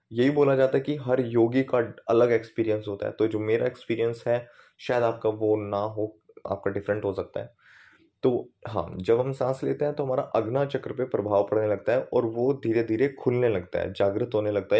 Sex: male